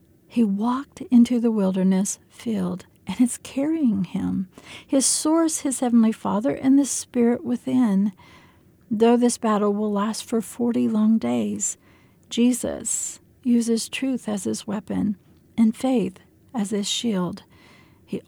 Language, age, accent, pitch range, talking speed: English, 60-79, American, 190-240 Hz, 130 wpm